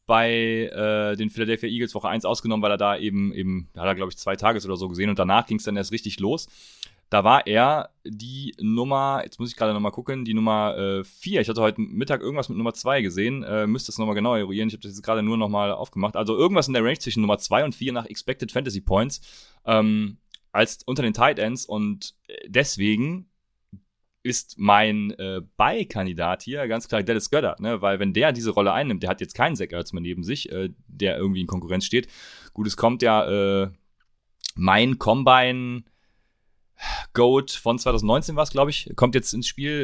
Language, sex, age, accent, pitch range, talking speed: German, male, 30-49, German, 100-120 Hz, 210 wpm